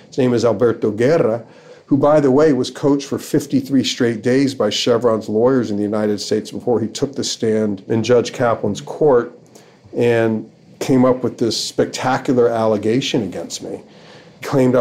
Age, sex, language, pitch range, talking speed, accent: 40-59, male, English, 110-130 Hz, 165 wpm, American